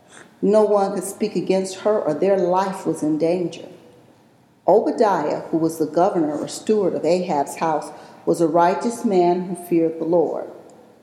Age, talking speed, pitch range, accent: 50-69, 165 wpm, 160-225 Hz, American